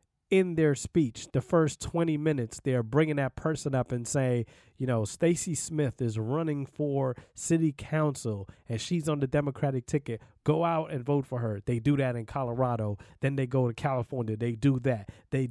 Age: 20-39